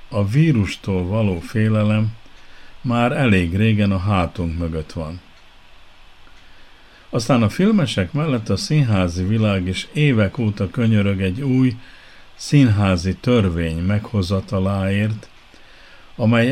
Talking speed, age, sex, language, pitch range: 100 wpm, 50-69, male, Hungarian, 95-115 Hz